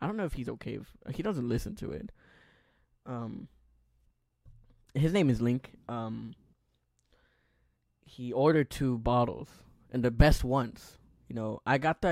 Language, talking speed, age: English, 160 wpm, 10-29